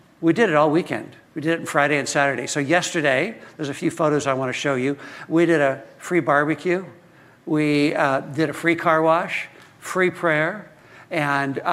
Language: English